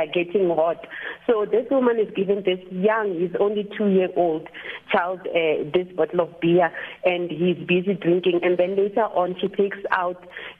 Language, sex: English, female